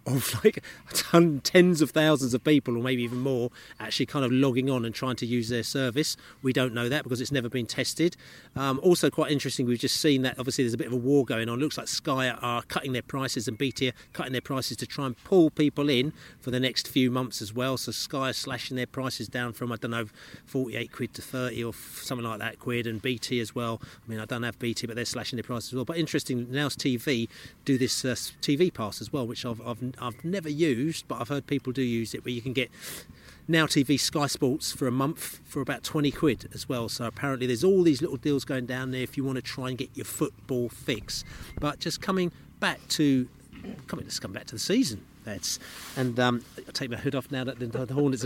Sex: male